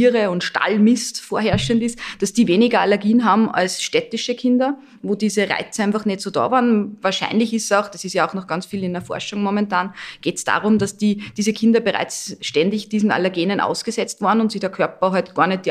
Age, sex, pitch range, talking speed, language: 20-39, female, 175-215 Hz, 215 wpm, German